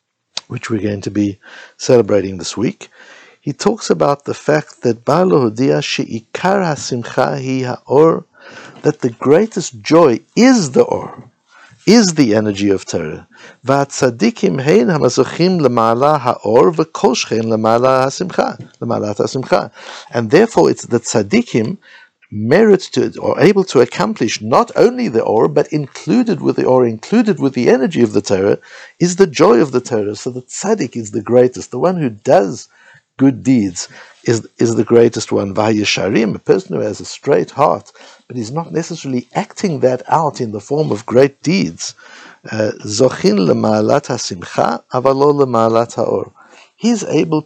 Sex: male